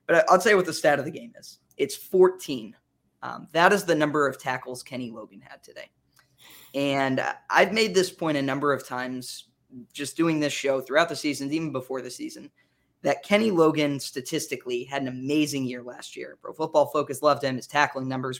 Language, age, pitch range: English, 20-39, 130-160 Hz